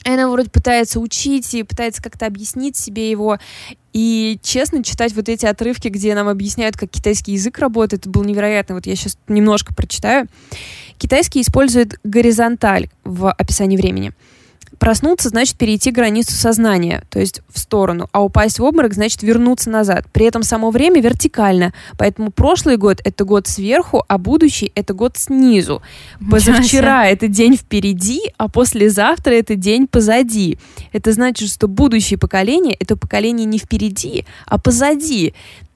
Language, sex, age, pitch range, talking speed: Russian, female, 20-39, 200-235 Hz, 150 wpm